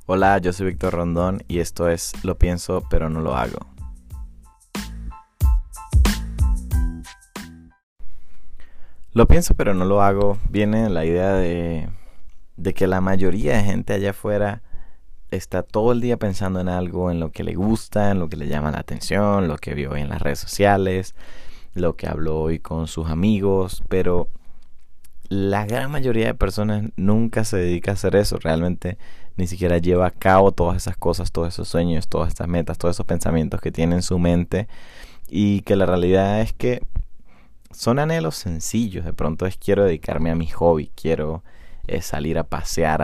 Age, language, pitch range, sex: 20-39, Spanish, 80-100 Hz, male